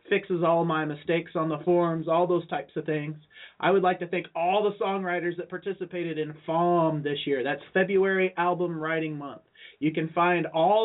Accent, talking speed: American, 195 wpm